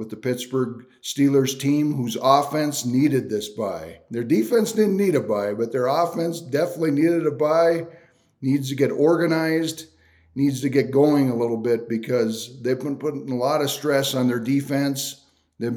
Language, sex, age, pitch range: English, male, 50-69, 125-140 Hz